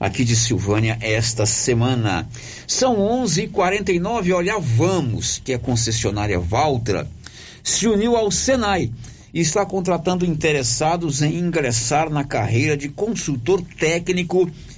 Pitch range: 120-170 Hz